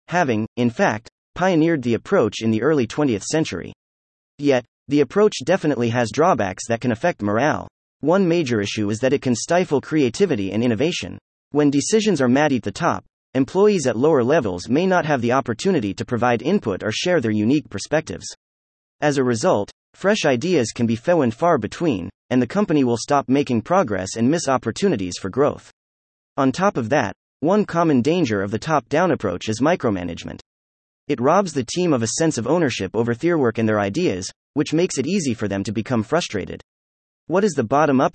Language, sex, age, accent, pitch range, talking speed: English, male, 30-49, American, 100-155 Hz, 190 wpm